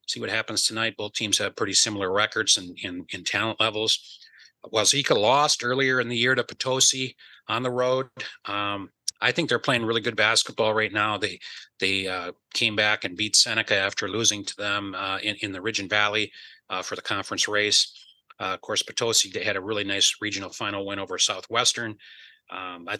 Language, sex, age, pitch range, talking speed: English, male, 30-49, 105-125 Hz, 205 wpm